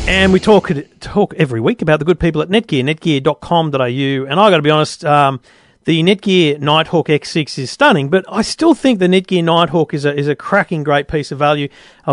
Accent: Australian